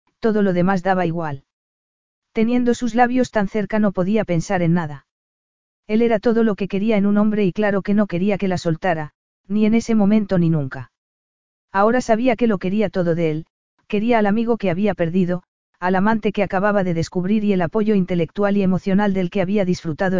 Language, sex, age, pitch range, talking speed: Spanish, female, 40-59, 180-215 Hz, 200 wpm